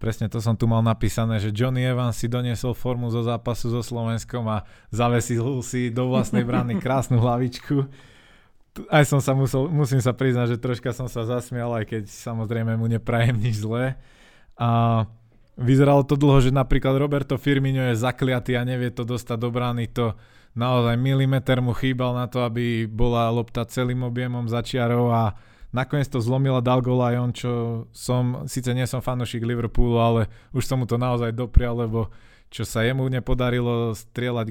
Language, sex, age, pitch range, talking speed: Slovak, male, 20-39, 110-125 Hz, 170 wpm